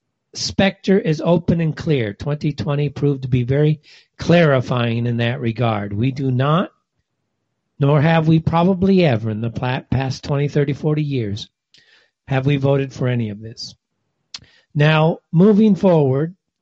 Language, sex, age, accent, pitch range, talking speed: English, male, 50-69, American, 125-160 Hz, 140 wpm